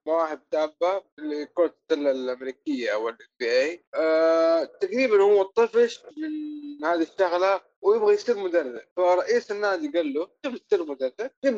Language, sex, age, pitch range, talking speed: Arabic, male, 20-39, 145-195 Hz, 125 wpm